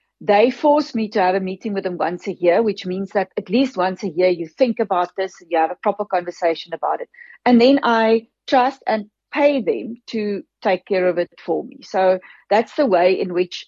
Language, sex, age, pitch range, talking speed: English, female, 40-59, 185-245 Hz, 230 wpm